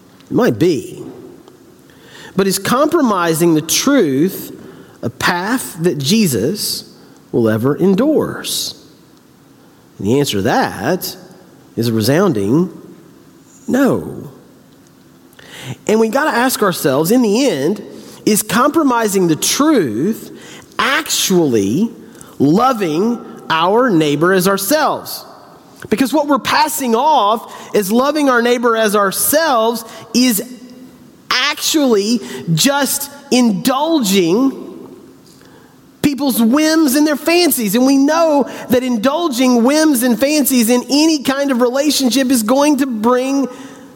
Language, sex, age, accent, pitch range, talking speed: English, male, 40-59, American, 200-275 Hz, 110 wpm